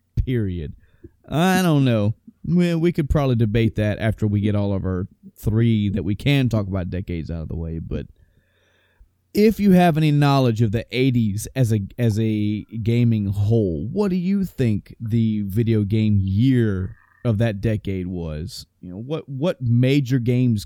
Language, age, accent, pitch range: English, 20-39, American, 105-140 Hz